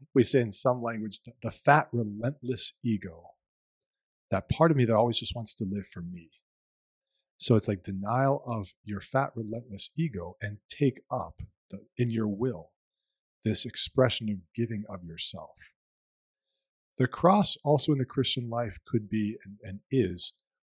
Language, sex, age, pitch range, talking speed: English, male, 40-59, 95-130 Hz, 160 wpm